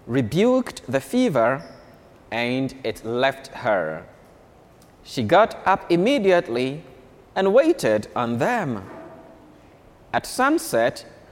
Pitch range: 125-205 Hz